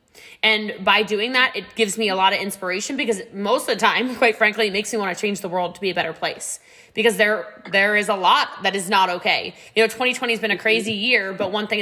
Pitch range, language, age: 190-250 Hz, English, 20-39